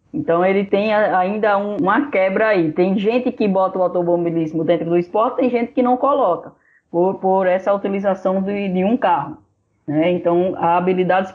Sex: female